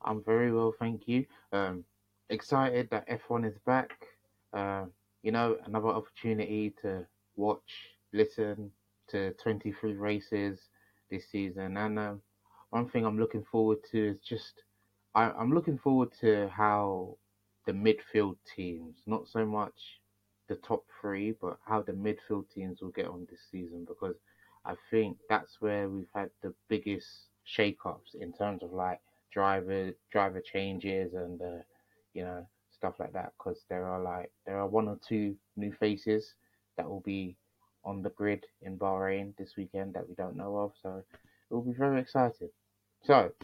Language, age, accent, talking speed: English, 20-39, British, 160 wpm